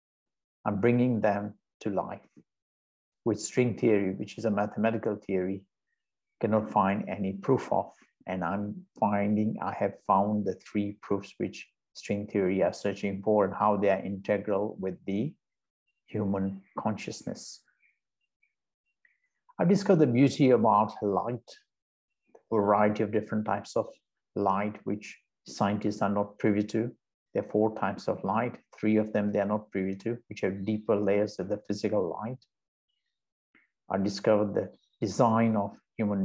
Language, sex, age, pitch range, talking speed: English, male, 60-79, 100-110 Hz, 145 wpm